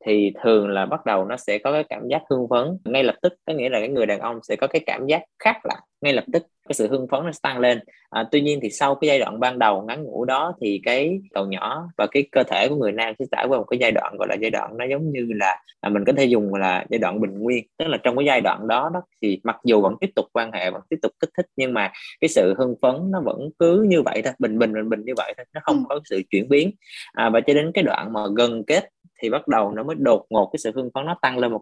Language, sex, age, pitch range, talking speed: Vietnamese, male, 20-39, 110-160 Hz, 300 wpm